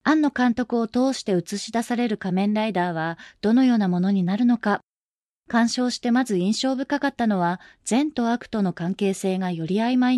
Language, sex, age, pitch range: Japanese, female, 20-39, 190-250 Hz